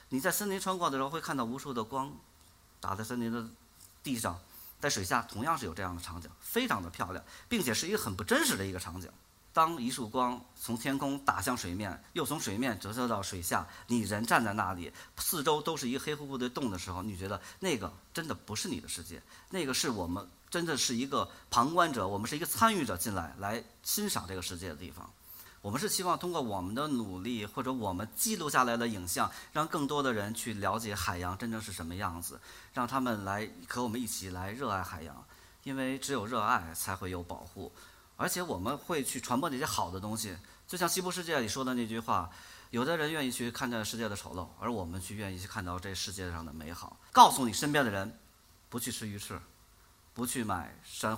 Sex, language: male, Chinese